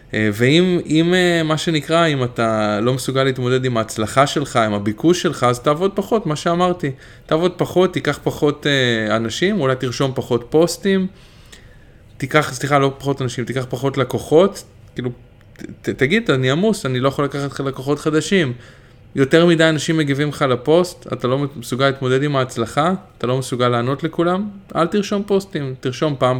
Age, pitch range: 20-39, 115-155 Hz